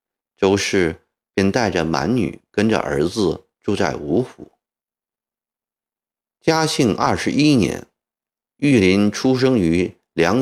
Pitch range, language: 90-130 Hz, Chinese